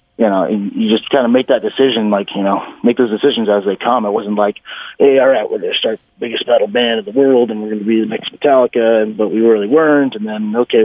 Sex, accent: male, American